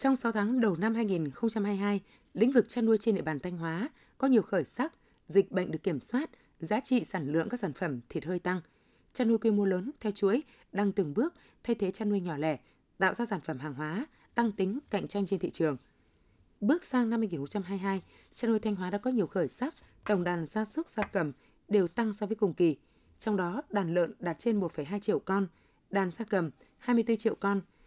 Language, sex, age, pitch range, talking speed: Vietnamese, female, 20-39, 180-225 Hz, 220 wpm